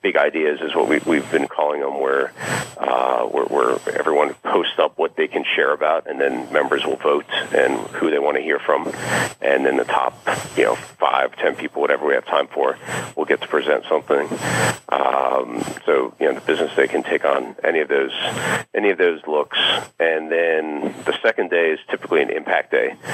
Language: English